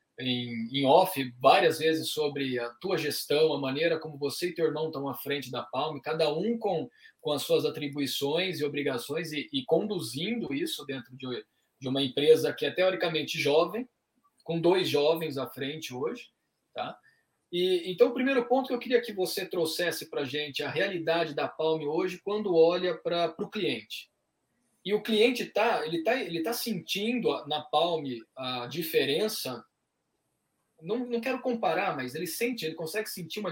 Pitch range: 150-210 Hz